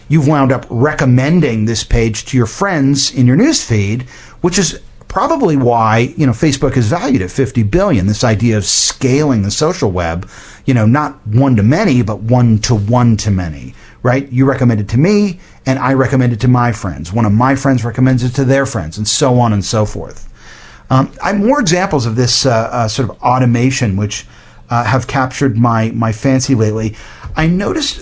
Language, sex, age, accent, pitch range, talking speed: English, male, 40-59, American, 115-150 Hz, 200 wpm